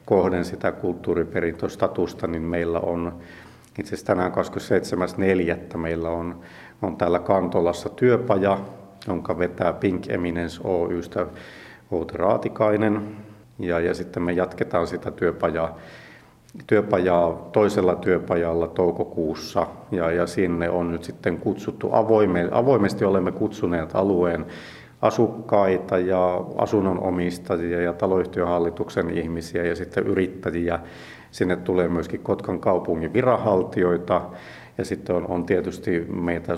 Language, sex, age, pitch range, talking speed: Finnish, male, 50-69, 85-95 Hz, 110 wpm